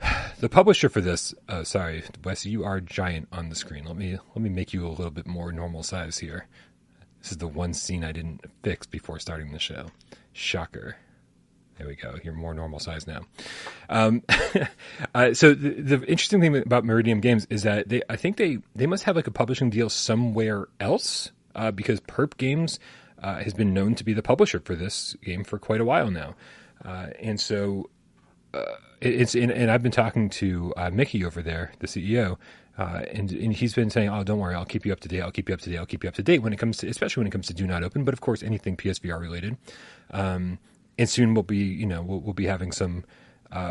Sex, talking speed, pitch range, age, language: male, 230 wpm, 90-115 Hz, 30-49, English